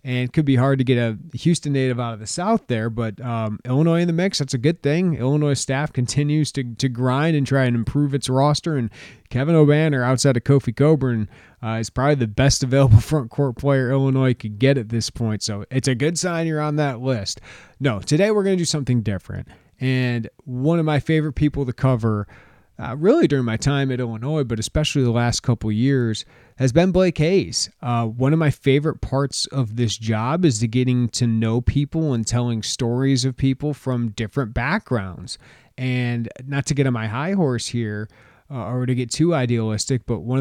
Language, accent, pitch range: English, American, 115-145 Hz